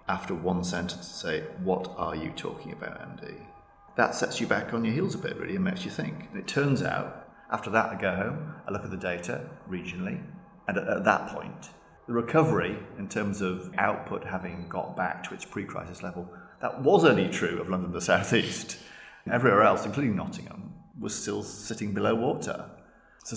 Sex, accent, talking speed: male, British, 200 wpm